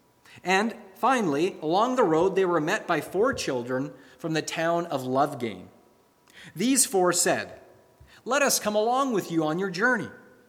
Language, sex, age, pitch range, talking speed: English, male, 30-49, 135-200 Hz, 160 wpm